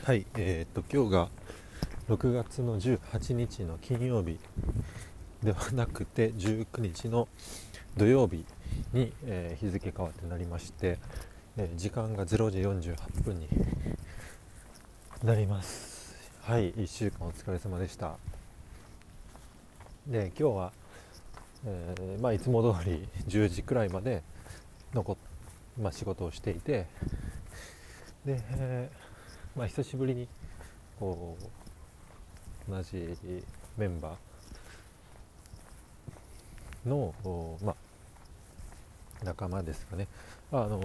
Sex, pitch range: male, 85-110 Hz